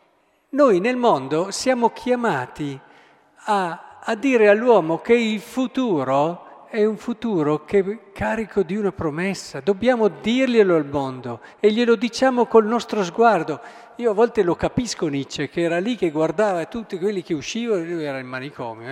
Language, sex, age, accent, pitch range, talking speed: Italian, male, 50-69, native, 135-220 Hz, 160 wpm